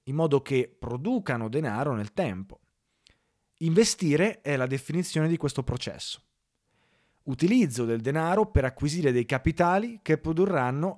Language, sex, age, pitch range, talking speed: Italian, male, 30-49, 120-165 Hz, 125 wpm